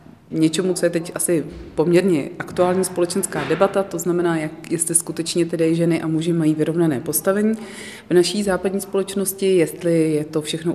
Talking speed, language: 160 wpm, Czech